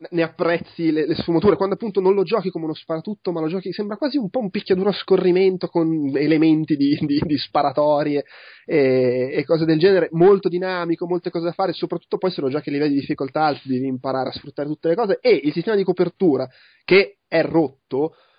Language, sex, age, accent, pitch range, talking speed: Italian, male, 20-39, native, 135-170 Hz, 210 wpm